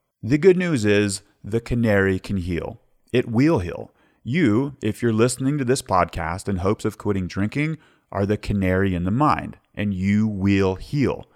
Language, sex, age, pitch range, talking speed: English, male, 30-49, 95-130 Hz, 175 wpm